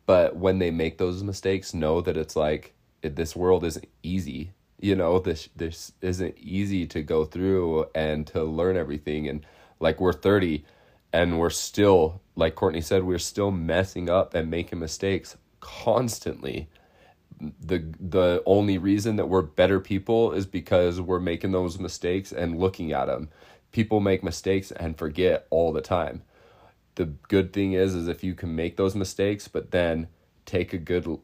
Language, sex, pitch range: English, male, 80-95 Hz